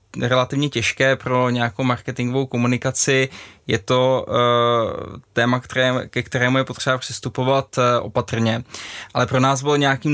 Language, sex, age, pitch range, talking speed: Czech, male, 20-39, 125-140 Hz, 135 wpm